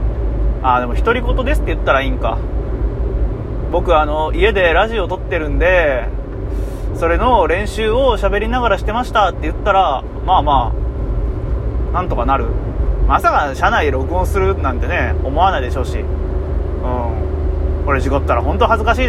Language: Japanese